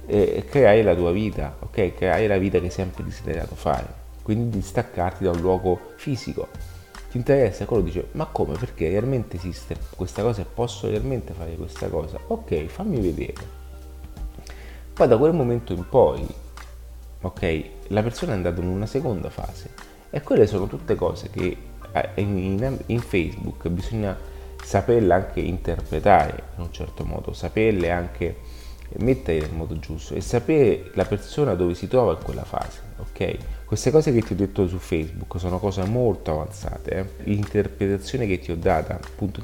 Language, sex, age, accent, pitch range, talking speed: Italian, male, 30-49, native, 80-100 Hz, 165 wpm